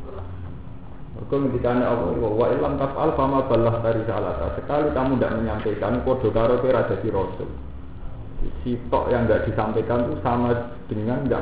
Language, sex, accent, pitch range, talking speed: Indonesian, male, native, 95-120 Hz, 95 wpm